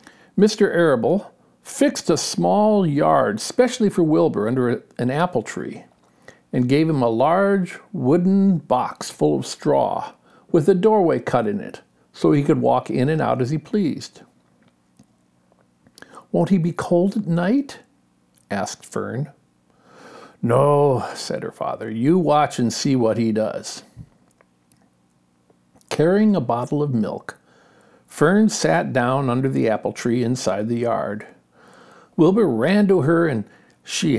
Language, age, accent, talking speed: English, 60-79, American, 140 wpm